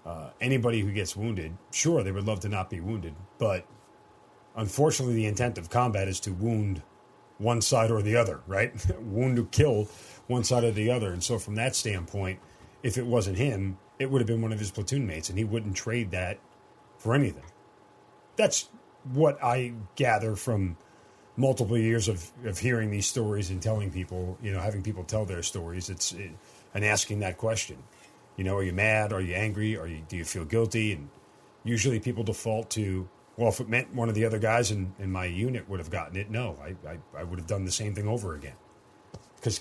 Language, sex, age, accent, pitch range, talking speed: English, male, 40-59, American, 95-115 Hz, 210 wpm